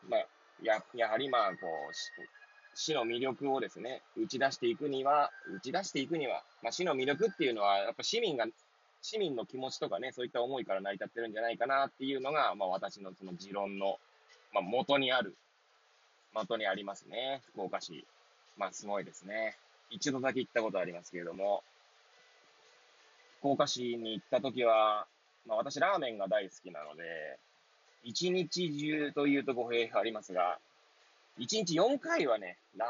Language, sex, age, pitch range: Japanese, male, 20-39, 100-150 Hz